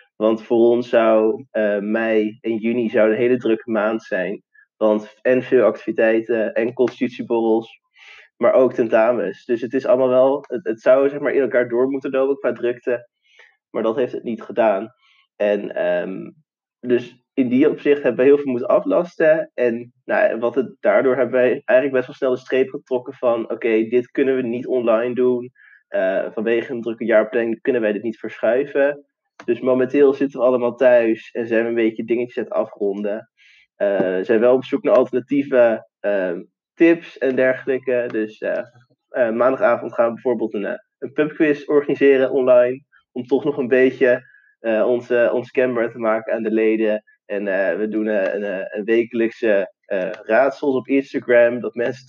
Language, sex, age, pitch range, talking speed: Dutch, male, 20-39, 115-135 Hz, 185 wpm